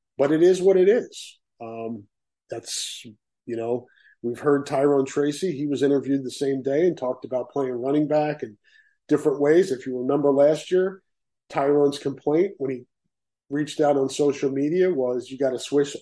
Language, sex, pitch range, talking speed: English, male, 130-170 Hz, 180 wpm